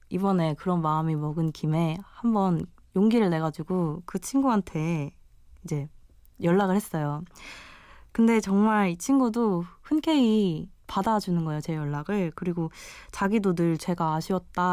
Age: 20-39